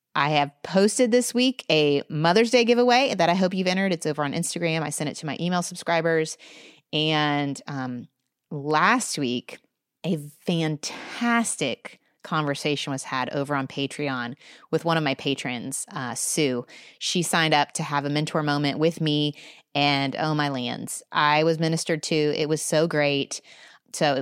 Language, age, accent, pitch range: English, 30-49, American, 150-200 Hz